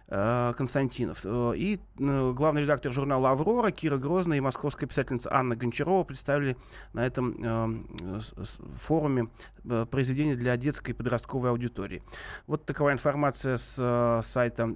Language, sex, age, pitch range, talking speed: Russian, male, 30-49, 120-145 Hz, 115 wpm